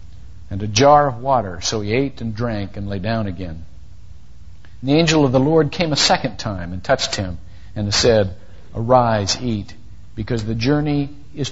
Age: 50-69